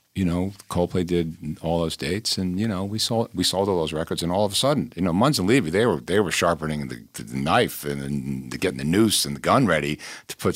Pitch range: 80-100 Hz